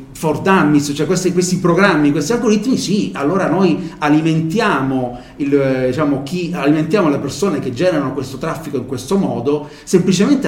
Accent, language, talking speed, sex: native, Italian, 150 wpm, male